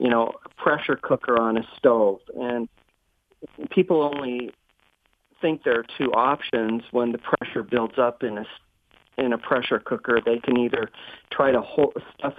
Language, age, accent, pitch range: English, 40-59, American, 115-130 Hz